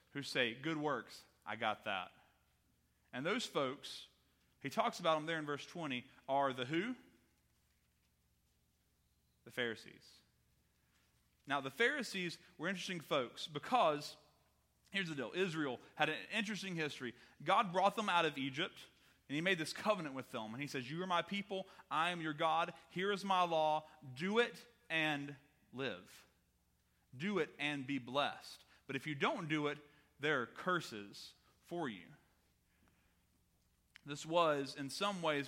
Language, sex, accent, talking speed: English, male, American, 150 wpm